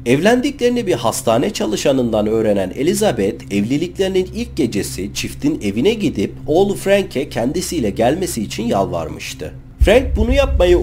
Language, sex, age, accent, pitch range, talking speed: Turkish, male, 40-59, native, 115-190 Hz, 115 wpm